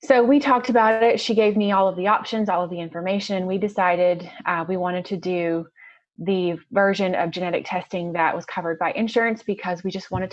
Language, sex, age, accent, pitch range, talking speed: English, female, 20-39, American, 175-215 Hz, 215 wpm